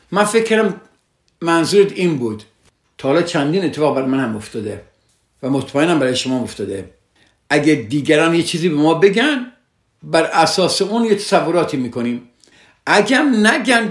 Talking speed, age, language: 140 wpm, 60-79, Persian